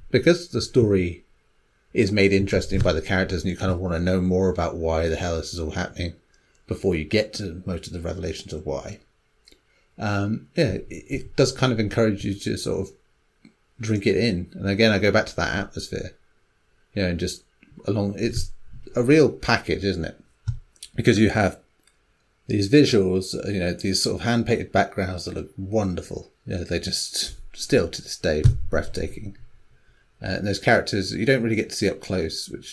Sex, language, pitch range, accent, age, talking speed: male, English, 85-105 Hz, British, 30-49, 195 wpm